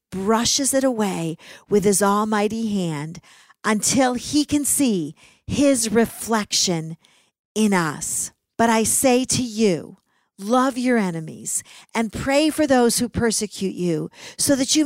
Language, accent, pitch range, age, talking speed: English, American, 210-275 Hz, 50-69, 135 wpm